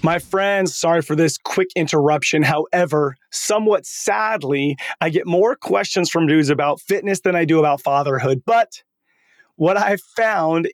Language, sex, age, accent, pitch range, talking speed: English, male, 30-49, American, 150-185 Hz, 150 wpm